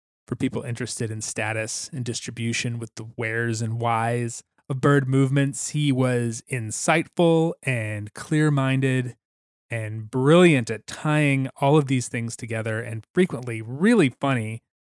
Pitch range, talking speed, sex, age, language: 115-145 Hz, 135 wpm, male, 20-39, English